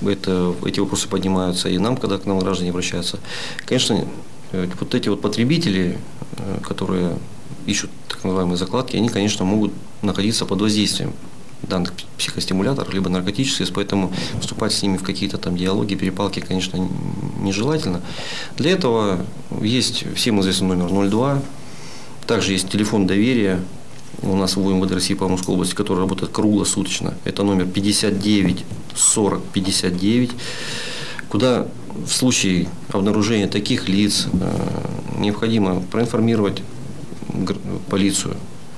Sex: male